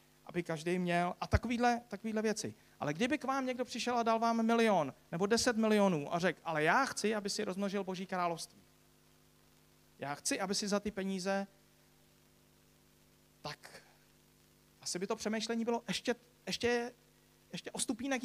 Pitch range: 150-220 Hz